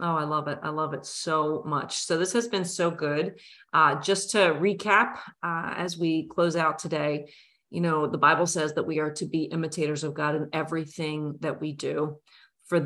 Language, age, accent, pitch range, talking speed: English, 30-49, American, 150-180 Hz, 205 wpm